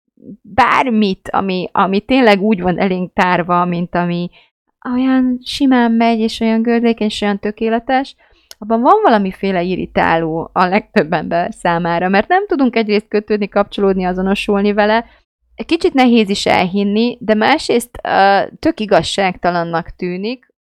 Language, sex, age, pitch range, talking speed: Hungarian, female, 30-49, 175-220 Hz, 125 wpm